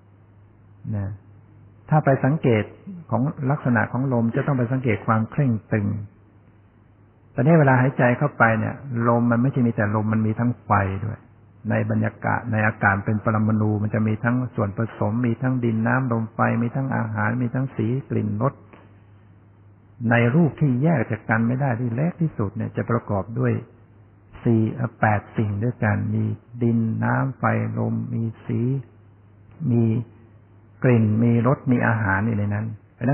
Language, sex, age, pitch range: Thai, male, 60-79, 105-120 Hz